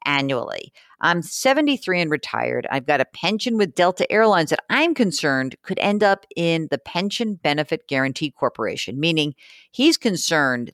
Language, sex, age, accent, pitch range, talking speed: English, female, 50-69, American, 135-200 Hz, 150 wpm